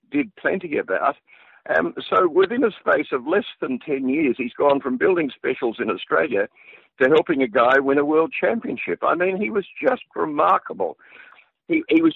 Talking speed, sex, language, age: 190 wpm, male, English, 60-79